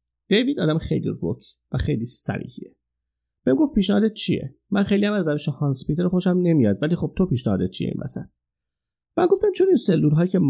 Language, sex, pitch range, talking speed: English, male, 120-165 Hz, 190 wpm